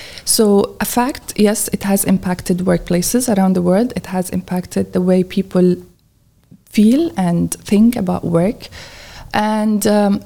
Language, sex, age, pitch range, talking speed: Arabic, female, 20-39, 180-215 Hz, 140 wpm